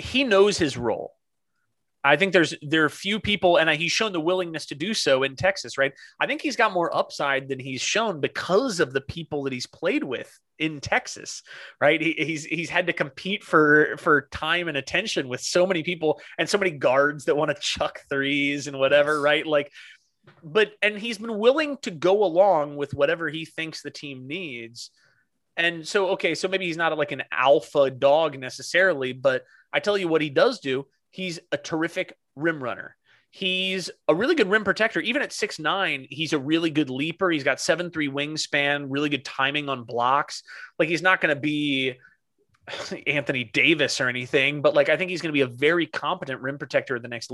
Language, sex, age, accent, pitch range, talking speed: English, male, 30-49, American, 140-180 Hz, 200 wpm